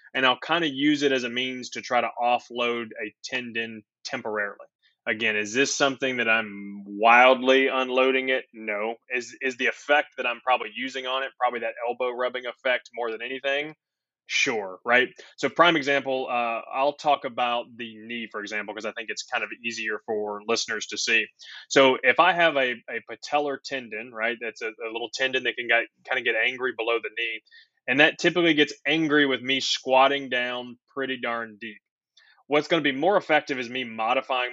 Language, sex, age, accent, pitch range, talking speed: English, male, 20-39, American, 115-140 Hz, 195 wpm